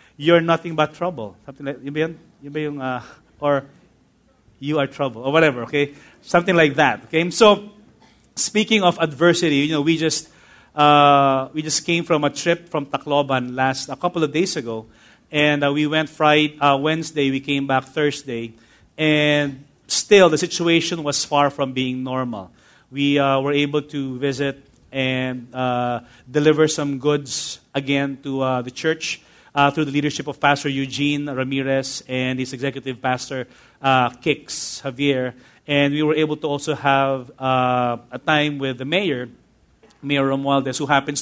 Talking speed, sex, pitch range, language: 155 wpm, male, 130-160 Hz, English